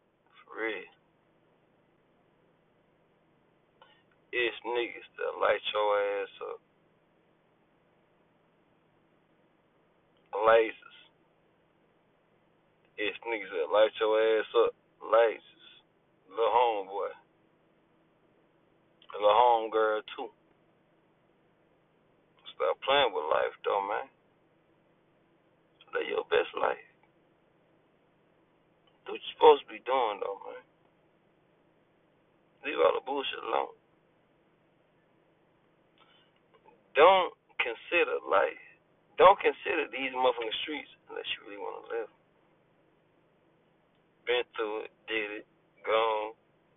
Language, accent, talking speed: English, American, 85 wpm